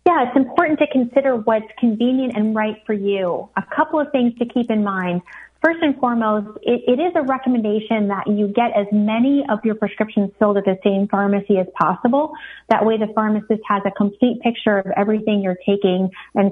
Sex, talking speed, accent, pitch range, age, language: female, 200 wpm, American, 200-240 Hz, 30-49, English